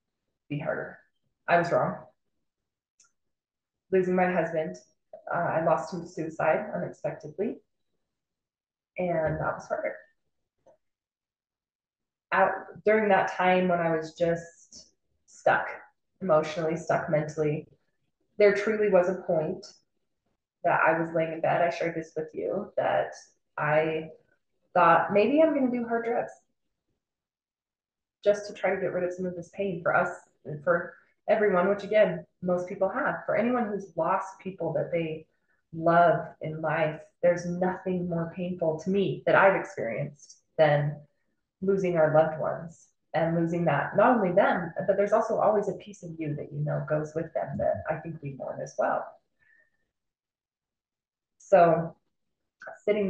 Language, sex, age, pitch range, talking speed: English, female, 20-39, 160-195 Hz, 145 wpm